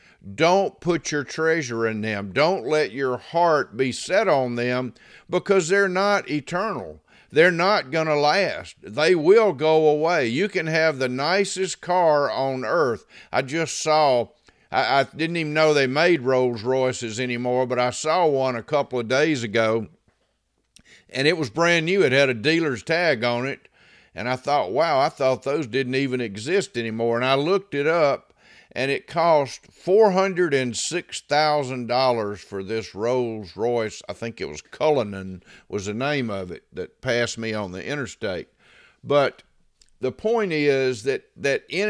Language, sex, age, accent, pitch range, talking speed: English, male, 50-69, American, 115-160 Hz, 165 wpm